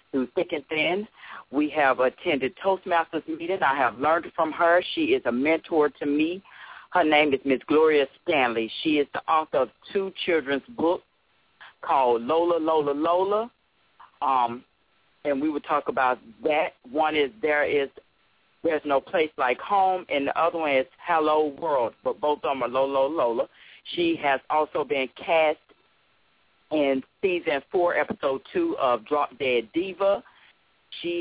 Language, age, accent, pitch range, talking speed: English, 40-59, American, 135-170 Hz, 160 wpm